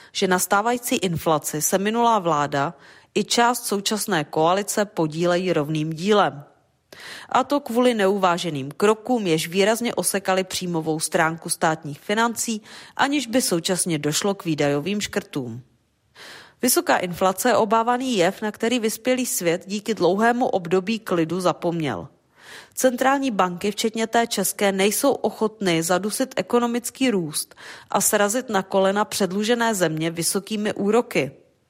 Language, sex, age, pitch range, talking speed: Czech, female, 30-49, 175-235 Hz, 125 wpm